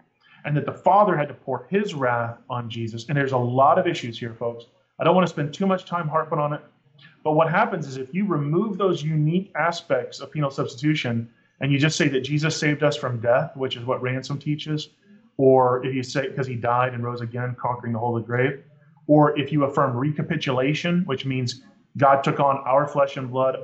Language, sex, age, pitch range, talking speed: English, male, 30-49, 130-150 Hz, 220 wpm